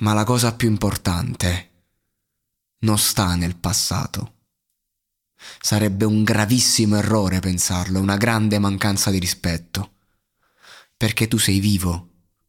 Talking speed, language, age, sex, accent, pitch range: 110 wpm, Italian, 30-49, male, native, 95-110 Hz